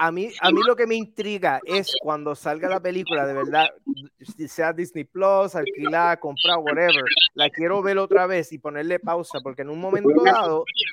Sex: male